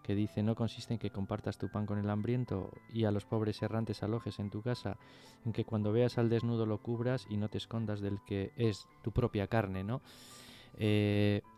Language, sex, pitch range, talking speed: Spanish, male, 100-115 Hz, 215 wpm